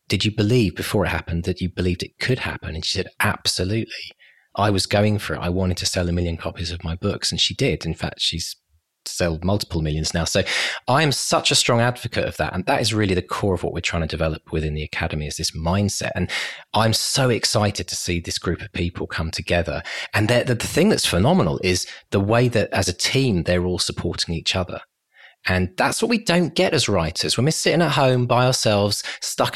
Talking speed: 230 wpm